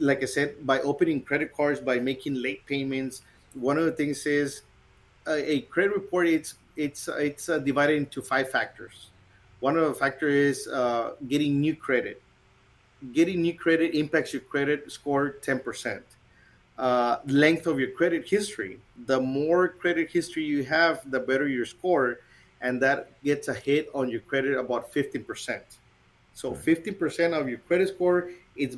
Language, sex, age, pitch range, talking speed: English, male, 30-49, 130-155 Hz, 165 wpm